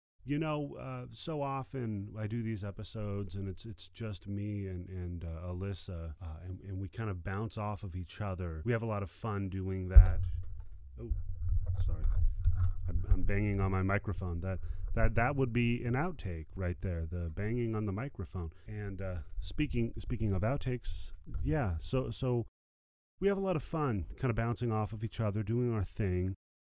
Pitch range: 90-135 Hz